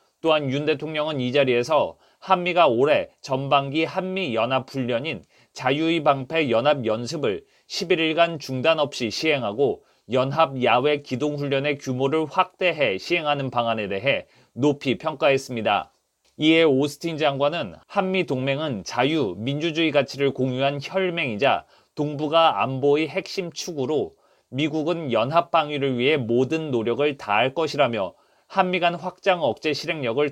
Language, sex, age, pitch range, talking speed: English, male, 30-49, 135-165 Hz, 115 wpm